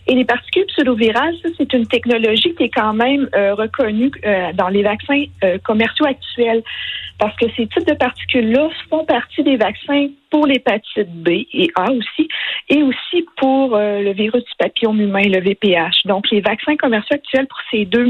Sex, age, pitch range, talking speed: female, 50-69, 200-250 Hz, 185 wpm